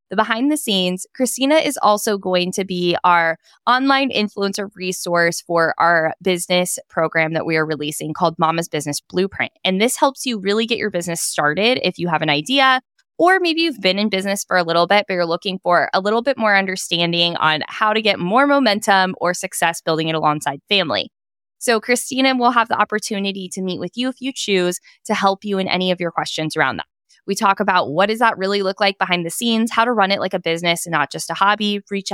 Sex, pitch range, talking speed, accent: female, 170-220 Hz, 220 wpm, American